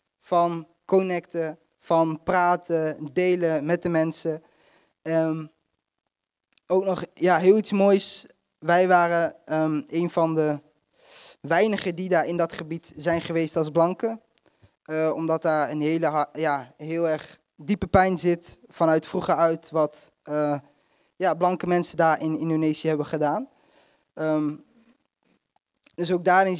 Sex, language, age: male, Dutch, 20-39